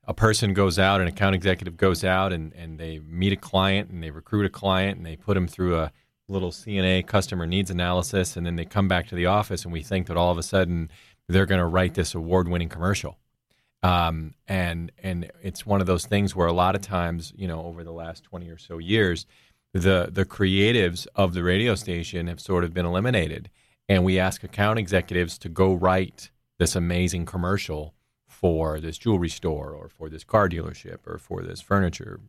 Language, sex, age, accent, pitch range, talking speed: English, male, 30-49, American, 90-110 Hz, 210 wpm